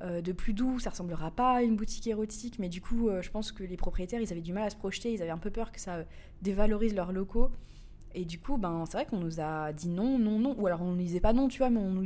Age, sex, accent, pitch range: 20-39, female, French, 175-230 Hz